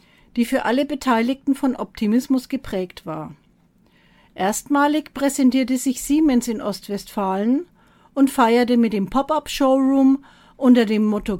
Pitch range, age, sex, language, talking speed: 215-270 Hz, 50-69, female, German, 115 wpm